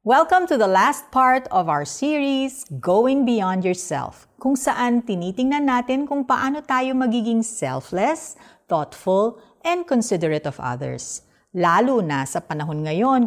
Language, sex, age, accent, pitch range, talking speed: Filipino, female, 50-69, native, 165-255 Hz, 135 wpm